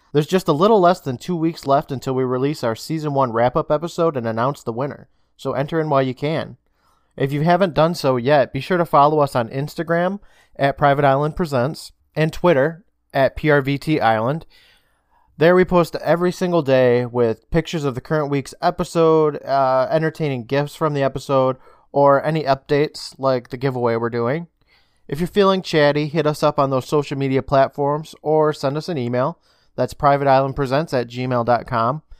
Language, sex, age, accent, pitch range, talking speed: English, male, 20-39, American, 130-155 Hz, 180 wpm